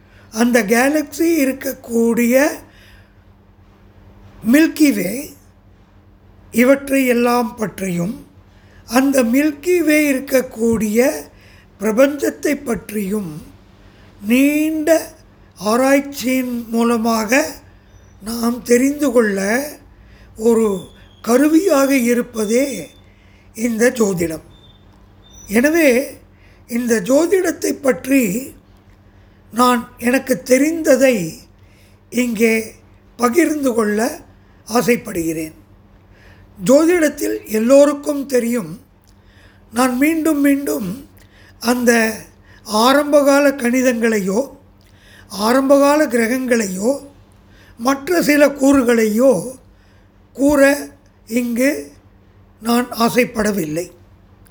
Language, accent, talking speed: Tamil, native, 55 wpm